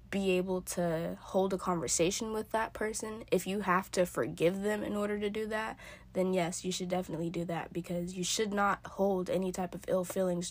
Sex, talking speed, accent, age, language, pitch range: female, 210 wpm, American, 10-29, English, 175-200 Hz